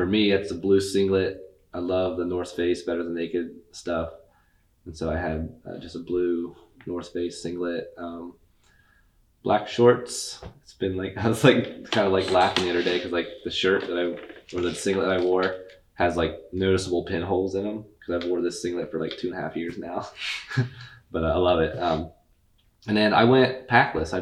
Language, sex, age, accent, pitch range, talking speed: English, male, 20-39, American, 85-100 Hz, 205 wpm